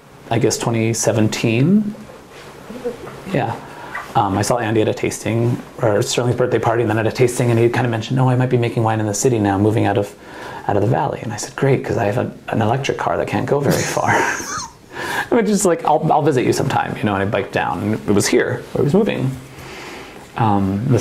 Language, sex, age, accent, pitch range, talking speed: English, male, 30-49, American, 105-135 Hz, 240 wpm